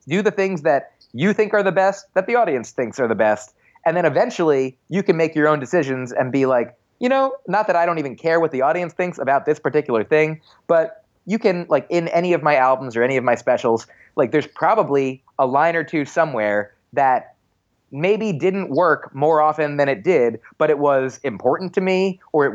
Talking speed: 220 wpm